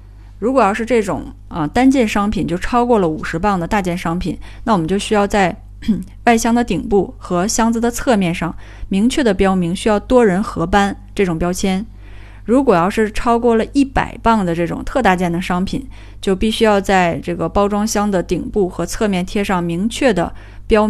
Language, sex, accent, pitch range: Chinese, female, native, 165-220 Hz